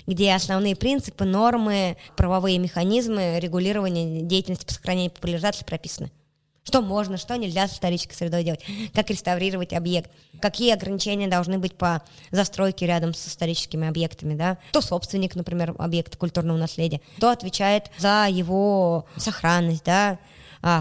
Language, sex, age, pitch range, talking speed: Russian, male, 20-39, 170-205 Hz, 125 wpm